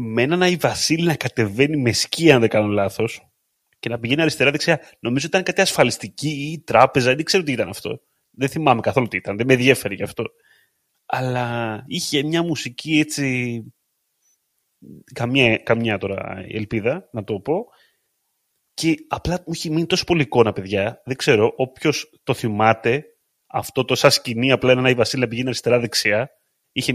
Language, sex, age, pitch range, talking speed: Greek, male, 30-49, 110-150 Hz, 165 wpm